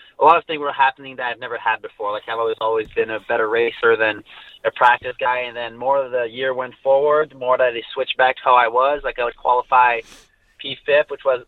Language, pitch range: English, 115-130 Hz